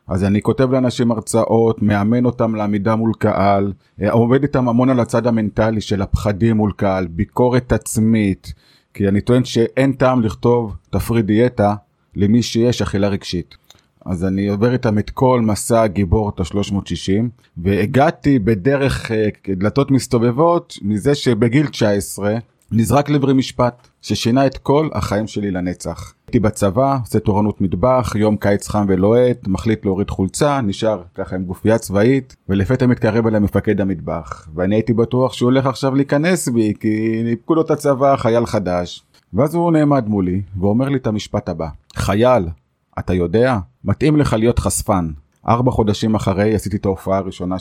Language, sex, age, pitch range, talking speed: Hebrew, male, 30-49, 100-120 Hz, 150 wpm